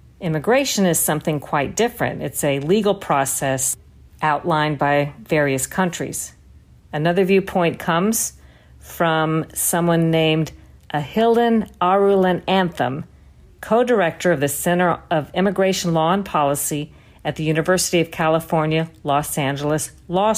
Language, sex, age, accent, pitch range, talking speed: English, female, 50-69, American, 150-185 Hz, 115 wpm